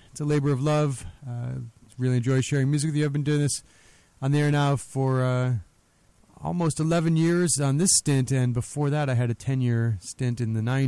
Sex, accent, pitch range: male, American, 125-155 Hz